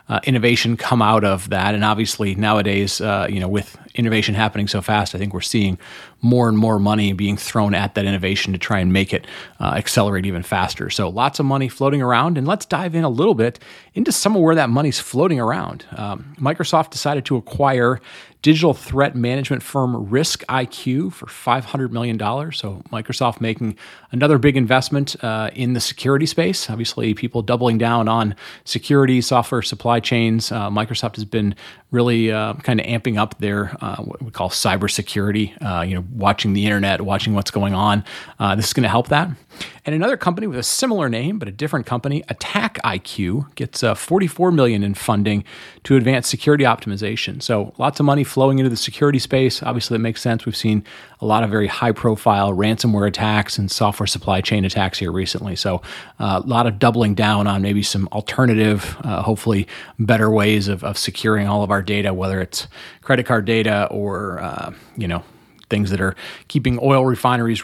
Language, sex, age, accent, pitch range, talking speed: English, male, 30-49, American, 105-130 Hz, 190 wpm